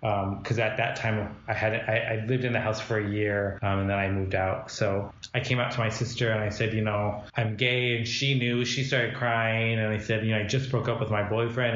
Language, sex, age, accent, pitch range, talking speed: English, male, 20-39, American, 105-120 Hz, 275 wpm